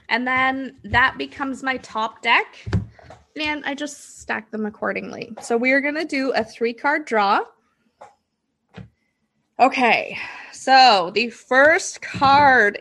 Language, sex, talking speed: English, female, 125 wpm